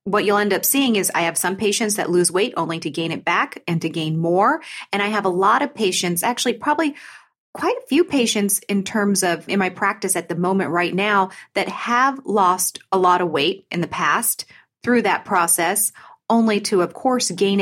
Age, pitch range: 30-49, 170-220 Hz